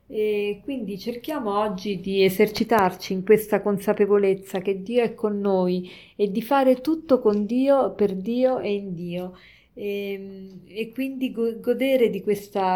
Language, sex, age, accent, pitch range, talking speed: Italian, female, 40-59, native, 190-235 Hz, 150 wpm